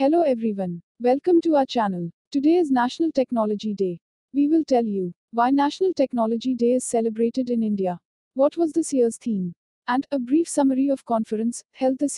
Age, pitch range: 50-69, 230-275 Hz